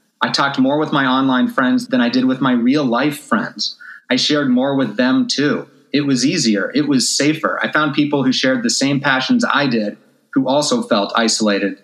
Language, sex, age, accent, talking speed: English, male, 30-49, American, 205 wpm